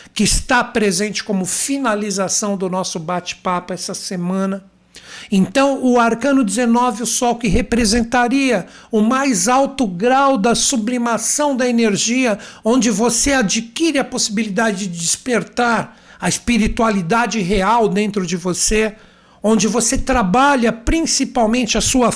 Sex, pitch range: male, 200-240 Hz